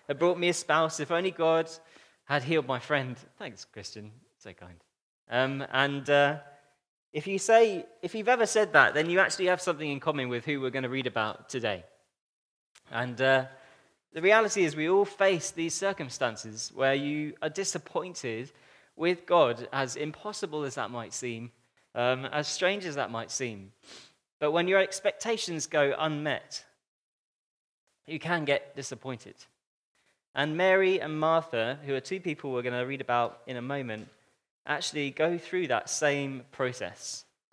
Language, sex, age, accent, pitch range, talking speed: English, male, 20-39, British, 130-165 Hz, 165 wpm